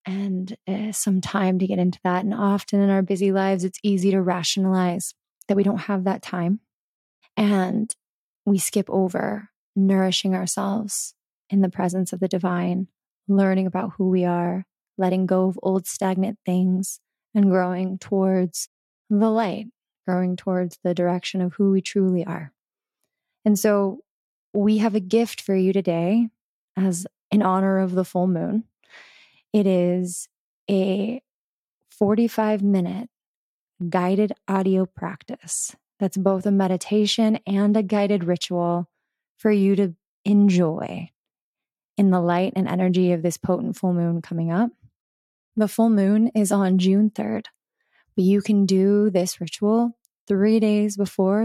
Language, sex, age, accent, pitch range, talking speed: English, female, 20-39, American, 185-210 Hz, 145 wpm